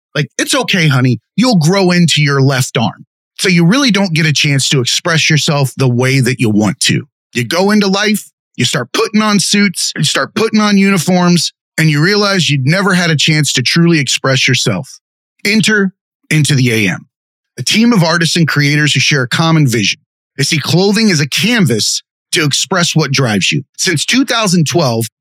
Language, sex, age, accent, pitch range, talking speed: English, male, 30-49, American, 140-190 Hz, 190 wpm